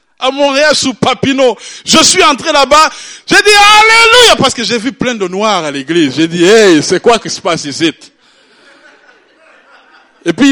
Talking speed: 200 wpm